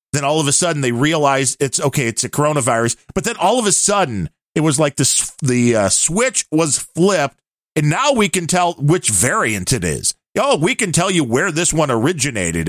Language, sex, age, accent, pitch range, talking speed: English, male, 40-59, American, 110-150 Hz, 220 wpm